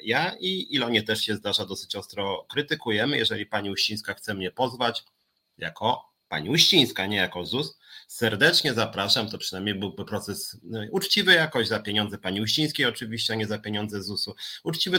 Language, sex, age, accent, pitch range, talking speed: Polish, male, 30-49, native, 95-120 Hz, 160 wpm